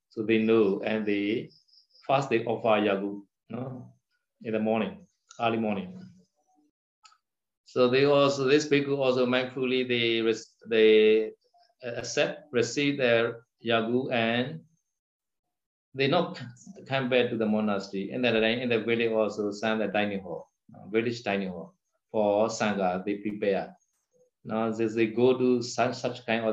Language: Vietnamese